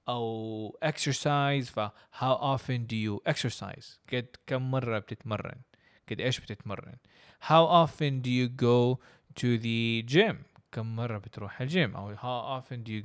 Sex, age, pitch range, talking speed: male, 20-39, 110-150 Hz, 145 wpm